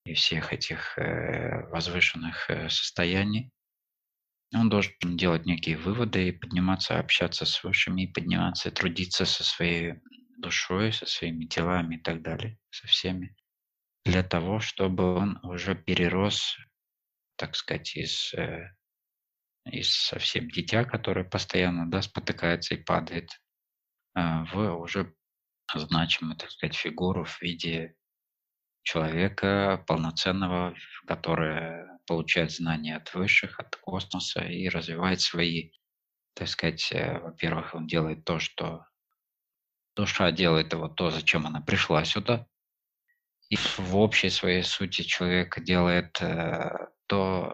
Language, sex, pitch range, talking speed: Russian, male, 85-95 Hz, 110 wpm